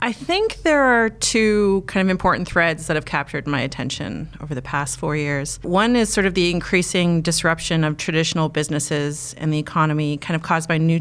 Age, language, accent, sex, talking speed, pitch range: 30-49, English, American, female, 200 wpm, 150-185 Hz